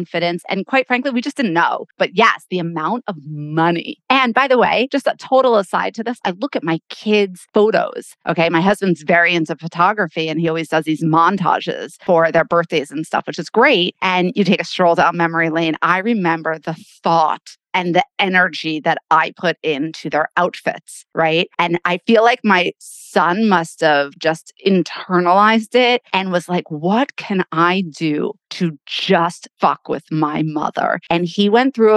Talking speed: 190 wpm